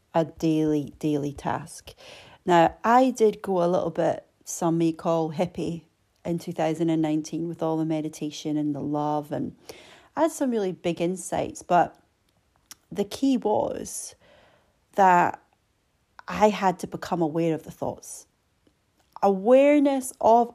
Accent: British